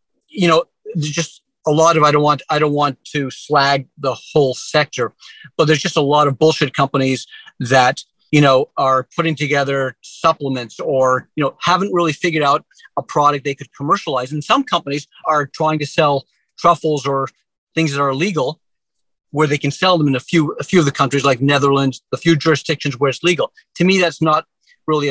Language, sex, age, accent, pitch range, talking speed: English, male, 40-59, American, 140-165 Hz, 200 wpm